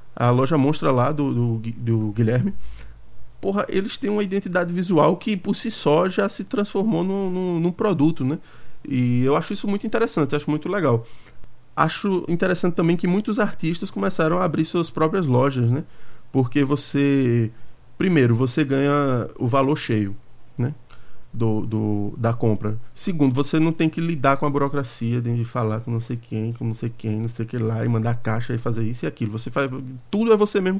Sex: male